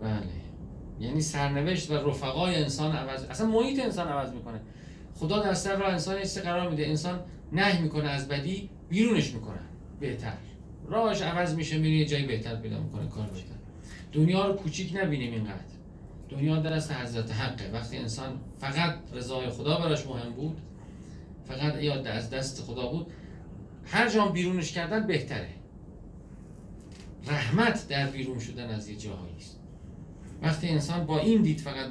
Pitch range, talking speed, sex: 120-160 Hz, 150 wpm, male